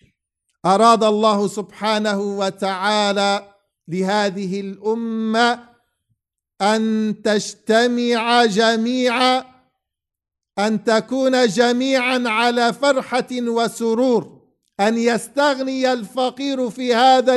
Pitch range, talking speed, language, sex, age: 180-230 Hz, 70 wpm, English, male, 50-69